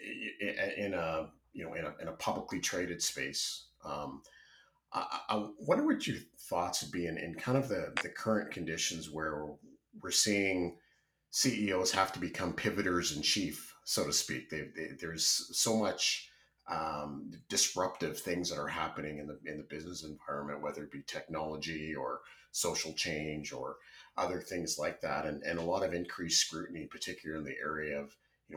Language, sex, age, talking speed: English, male, 40-59, 170 wpm